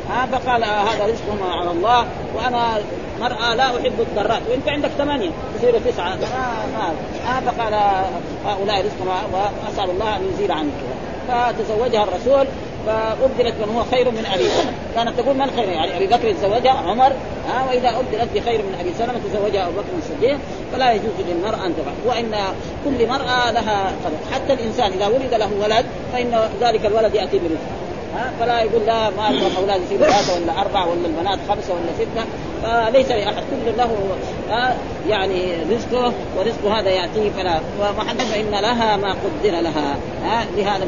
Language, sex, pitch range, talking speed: Arabic, female, 205-250 Hz, 160 wpm